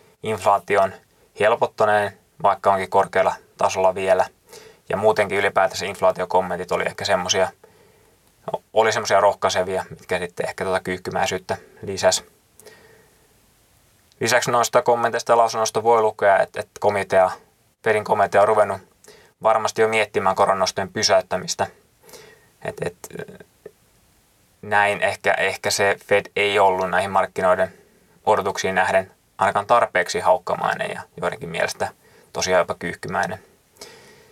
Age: 20-39